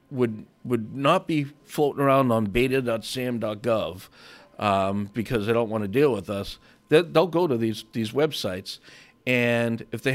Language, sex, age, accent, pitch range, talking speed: English, male, 50-69, American, 110-140 Hz, 160 wpm